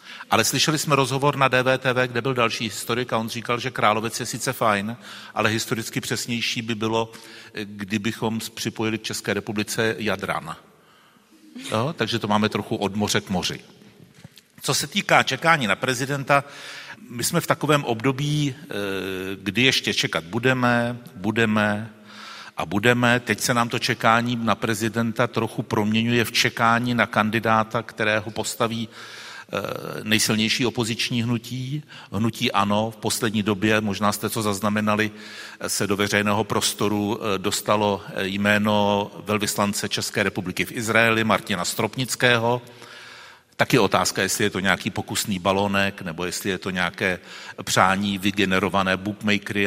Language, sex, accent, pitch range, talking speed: Czech, male, native, 105-120 Hz, 135 wpm